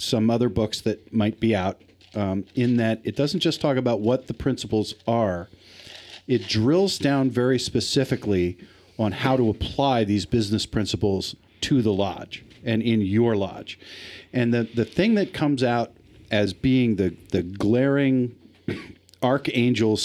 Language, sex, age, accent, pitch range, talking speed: English, male, 50-69, American, 95-120 Hz, 155 wpm